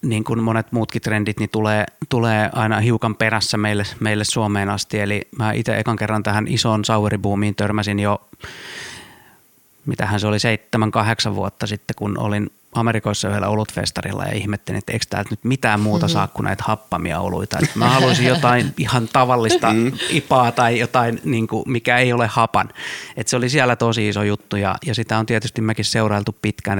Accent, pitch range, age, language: native, 105-115 Hz, 30-49, Finnish